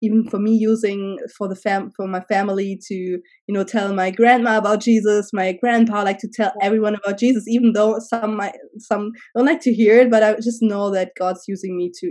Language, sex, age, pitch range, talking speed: English, female, 20-39, 185-225 Hz, 225 wpm